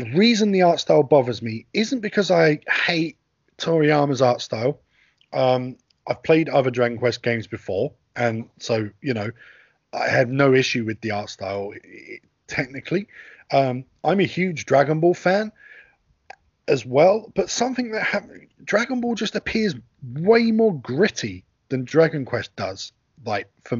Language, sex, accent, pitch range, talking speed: English, male, British, 125-185 Hz, 155 wpm